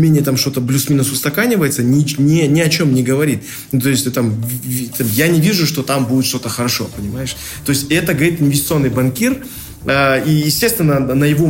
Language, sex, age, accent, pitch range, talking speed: Russian, male, 20-39, native, 120-155 Hz, 175 wpm